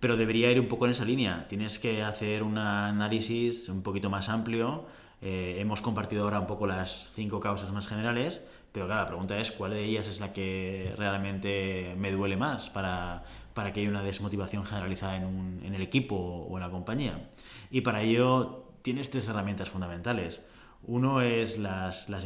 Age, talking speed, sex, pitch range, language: 20-39, 190 wpm, male, 95-115 Hz, Spanish